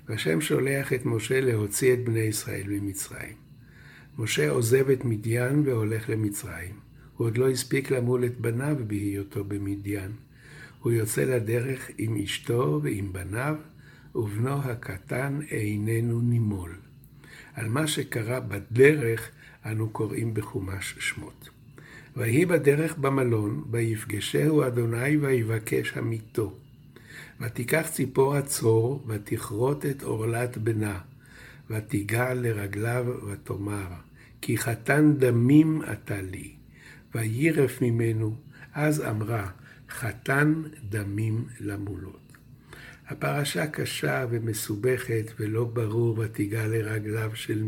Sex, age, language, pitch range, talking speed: male, 60-79, Hebrew, 110-135 Hz, 100 wpm